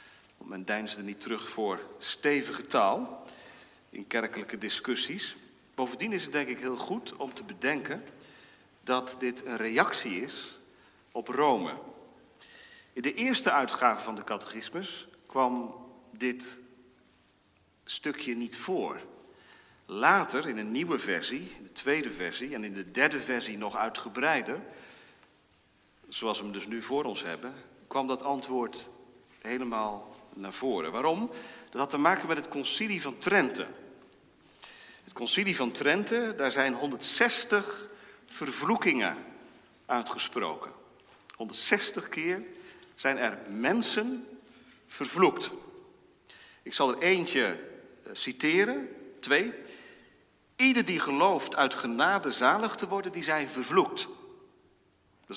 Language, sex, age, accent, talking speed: Dutch, male, 40-59, Dutch, 120 wpm